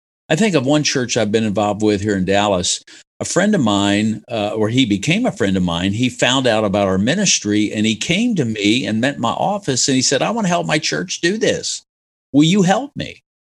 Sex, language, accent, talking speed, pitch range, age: male, English, American, 240 wpm, 105-155 Hz, 50-69